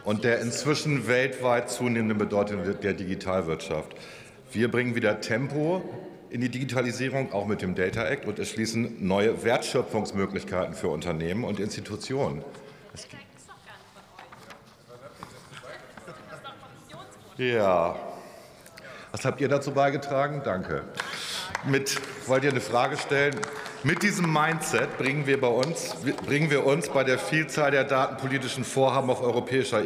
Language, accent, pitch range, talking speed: German, German, 105-135 Hz, 120 wpm